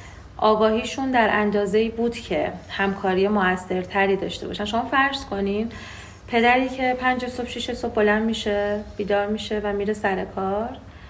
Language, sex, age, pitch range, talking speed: Persian, female, 40-59, 190-225 Hz, 140 wpm